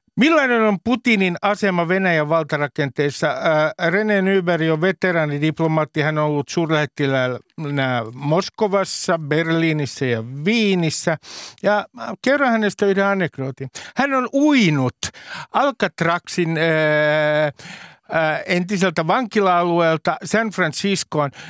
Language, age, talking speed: Finnish, 60-79, 85 wpm